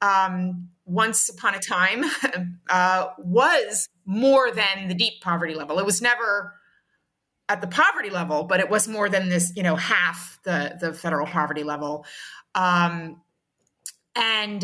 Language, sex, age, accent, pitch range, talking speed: English, female, 30-49, American, 175-205 Hz, 150 wpm